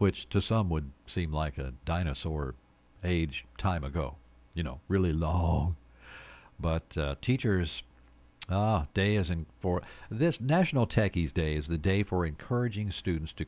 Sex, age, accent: male, 60-79, American